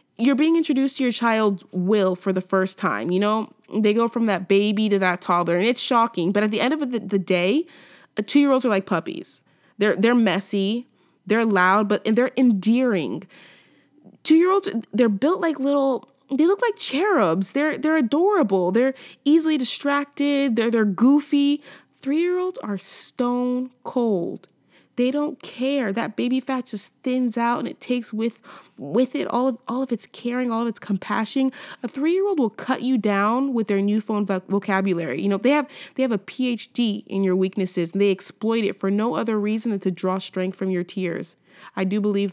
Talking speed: 190 wpm